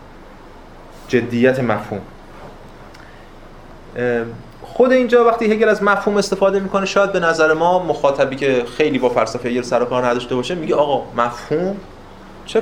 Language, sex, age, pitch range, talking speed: Persian, male, 30-49, 125-185 Hz, 135 wpm